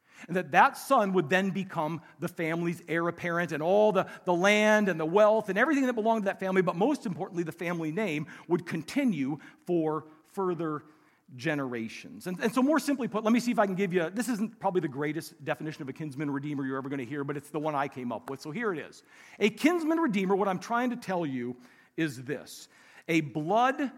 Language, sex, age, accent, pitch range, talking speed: English, male, 40-59, American, 135-200 Hz, 230 wpm